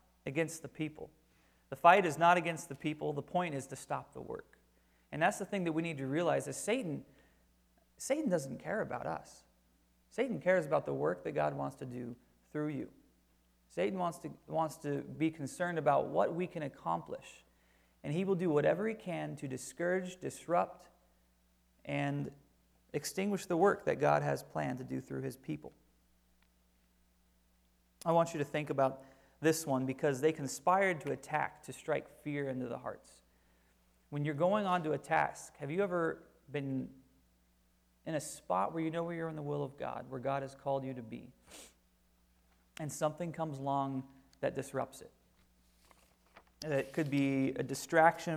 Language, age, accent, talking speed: English, 30-49, American, 175 wpm